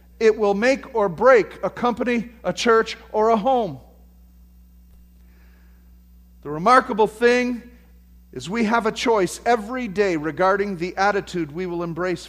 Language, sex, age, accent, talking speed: English, male, 50-69, American, 135 wpm